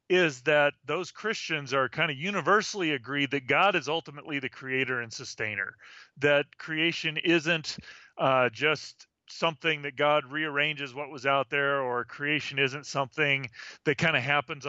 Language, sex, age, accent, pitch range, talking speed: English, male, 40-59, American, 130-160 Hz, 155 wpm